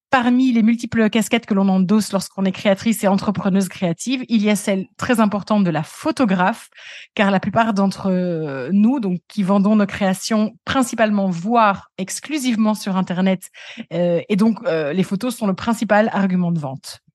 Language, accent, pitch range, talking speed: French, French, 195-240 Hz, 170 wpm